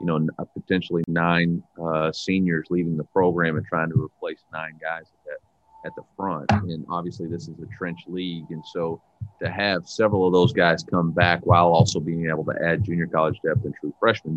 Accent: American